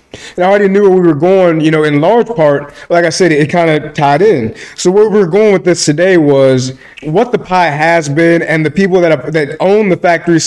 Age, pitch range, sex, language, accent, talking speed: 30-49, 145-175 Hz, male, English, American, 250 wpm